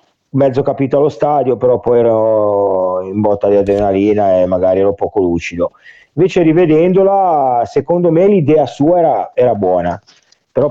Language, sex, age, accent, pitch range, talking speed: Italian, male, 40-59, native, 100-165 Hz, 145 wpm